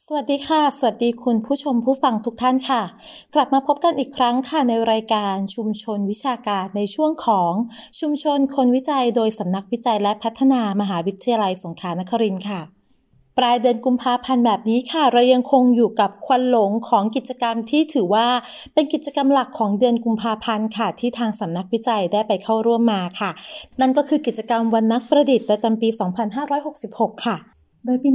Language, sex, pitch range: English, female, 200-245 Hz